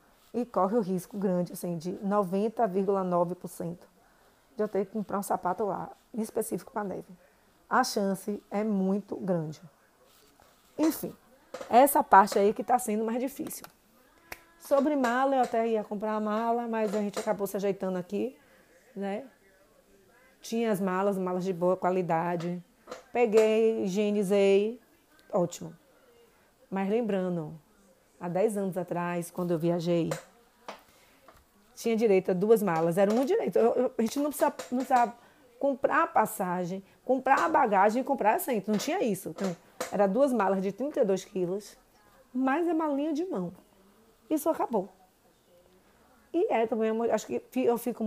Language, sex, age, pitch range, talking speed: Portuguese, female, 20-39, 185-240 Hz, 145 wpm